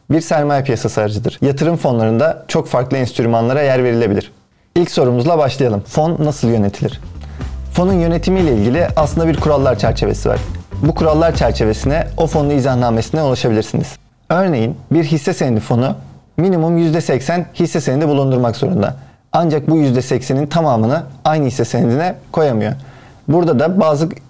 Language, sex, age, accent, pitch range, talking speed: Turkish, male, 40-59, native, 125-160 Hz, 135 wpm